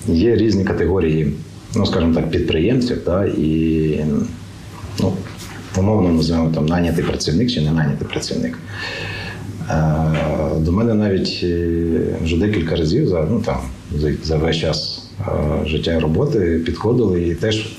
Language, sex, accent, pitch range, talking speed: Ukrainian, male, native, 80-95 Hz, 120 wpm